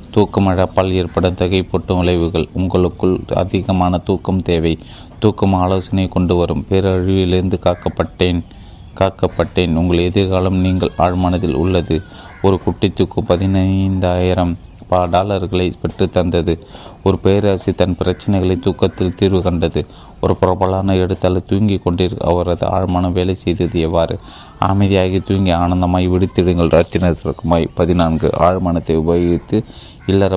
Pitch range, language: 85-95 Hz, Tamil